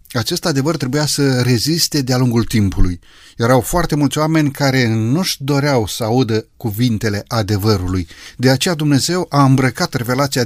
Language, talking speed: Romanian, 145 wpm